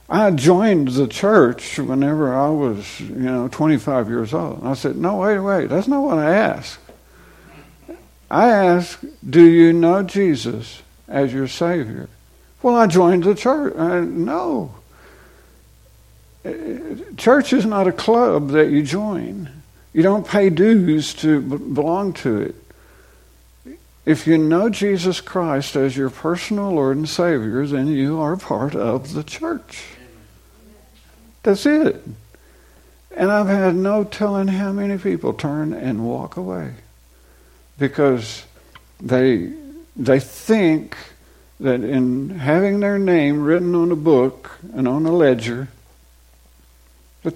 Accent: American